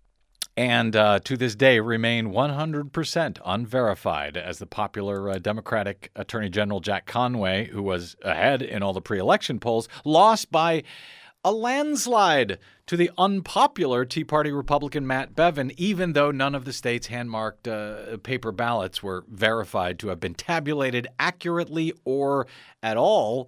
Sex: male